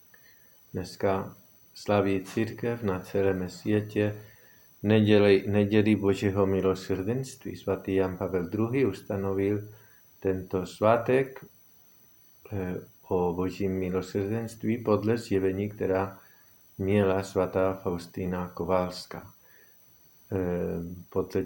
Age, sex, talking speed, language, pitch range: 50-69, male, 75 wpm, Czech, 95-110 Hz